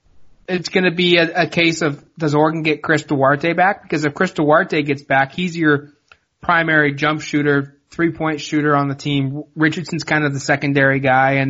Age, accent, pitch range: 20-39, American, 145-165 Hz